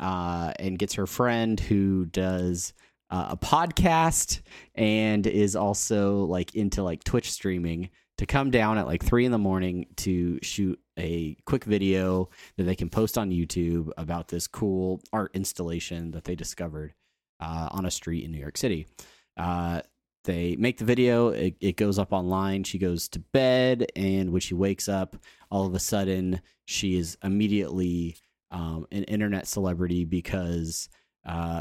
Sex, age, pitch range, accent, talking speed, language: male, 30-49, 85-105 Hz, American, 165 wpm, English